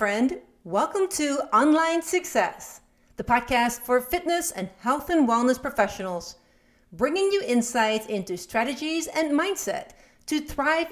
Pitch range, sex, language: 205-275 Hz, female, English